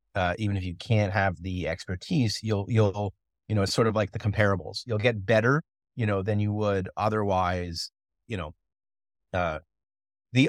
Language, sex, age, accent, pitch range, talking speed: English, male, 30-49, American, 95-110 Hz, 175 wpm